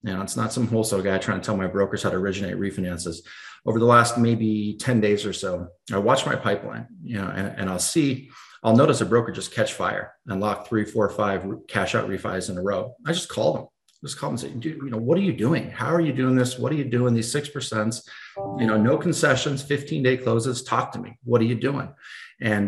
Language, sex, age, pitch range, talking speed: English, male, 40-59, 105-125 Hz, 250 wpm